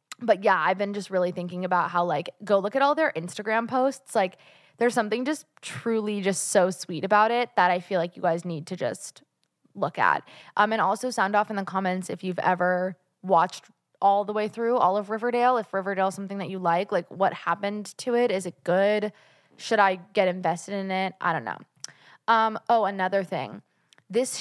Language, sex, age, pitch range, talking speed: English, female, 20-39, 180-220 Hz, 210 wpm